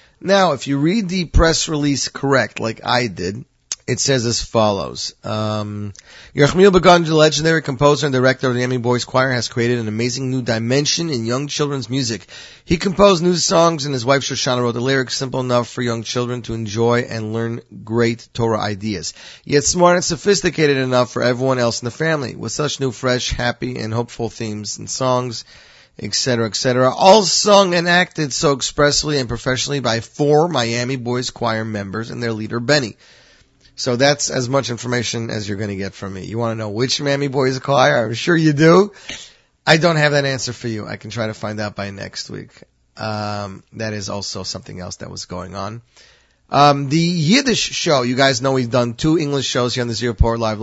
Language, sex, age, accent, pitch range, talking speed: English, male, 30-49, American, 115-145 Hz, 200 wpm